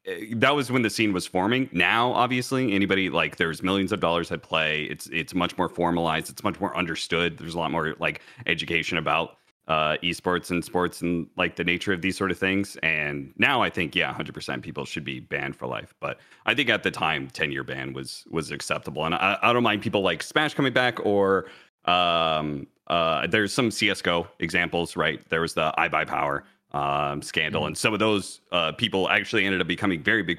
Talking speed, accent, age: 215 wpm, American, 30-49